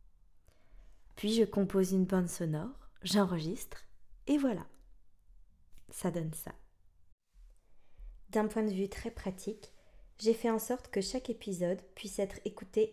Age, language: 20-39, French